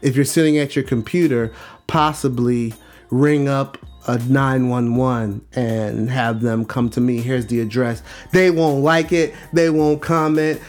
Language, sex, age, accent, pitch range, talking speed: English, male, 30-49, American, 125-185 Hz, 150 wpm